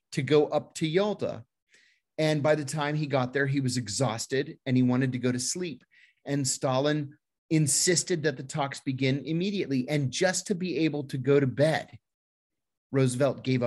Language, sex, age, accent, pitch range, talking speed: English, male, 30-49, American, 120-165 Hz, 180 wpm